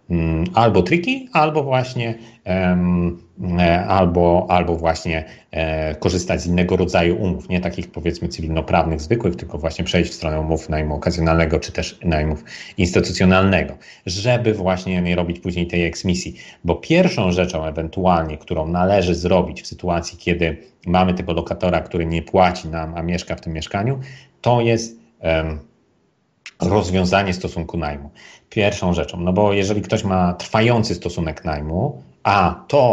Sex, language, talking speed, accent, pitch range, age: male, Polish, 140 wpm, native, 85-100 Hz, 40-59